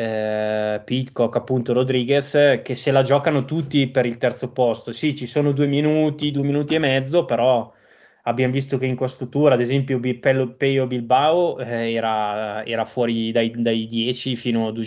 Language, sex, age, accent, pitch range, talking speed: Italian, male, 20-39, native, 115-145 Hz, 185 wpm